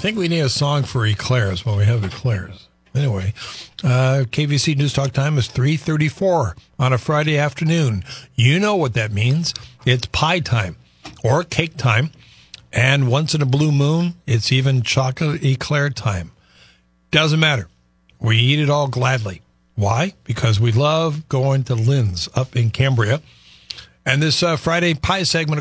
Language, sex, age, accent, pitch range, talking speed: English, male, 50-69, American, 115-150 Hz, 160 wpm